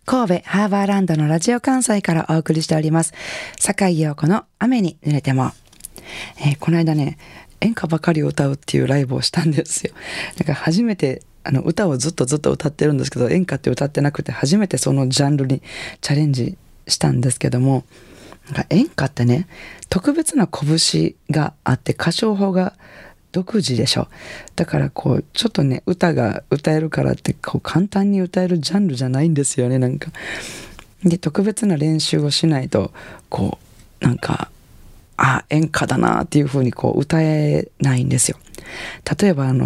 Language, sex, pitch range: Japanese, female, 135-180 Hz